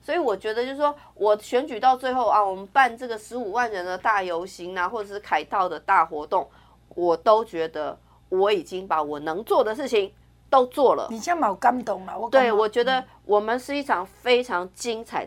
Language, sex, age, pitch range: Chinese, female, 30-49, 180-260 Hz